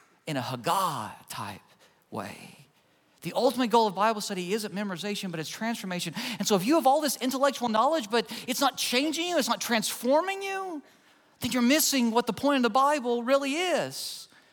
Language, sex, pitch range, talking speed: English, male, 210-275 Hz, 180 wpm